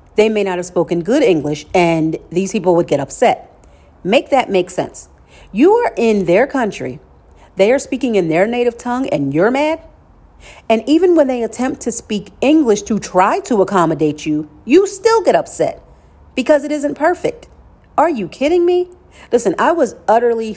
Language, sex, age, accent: English, female, 40-59, American